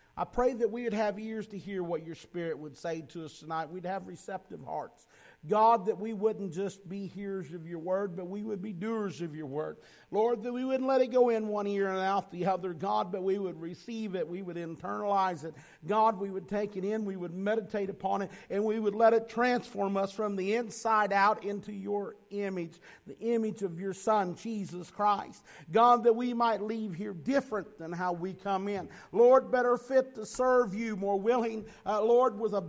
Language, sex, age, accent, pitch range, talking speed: English, male, 50-69, American, 160-210 Hz, 220 wpm